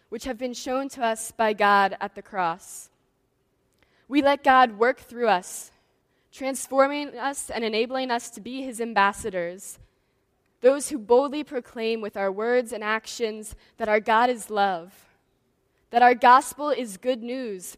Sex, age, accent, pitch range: female, 10-29, American, 175-240 Hz